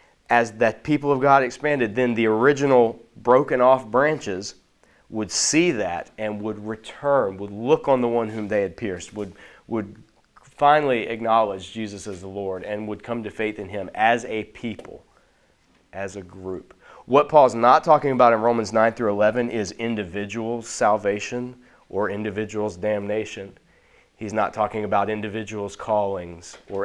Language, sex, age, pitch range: English, male, 30-49, 95-120 Hz